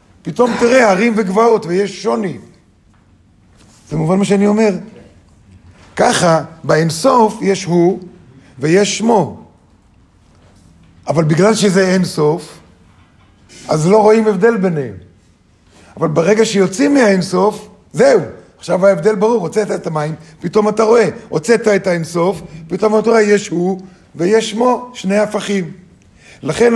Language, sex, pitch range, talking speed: Hebrew, male, 150-205 Hz, 120 wpm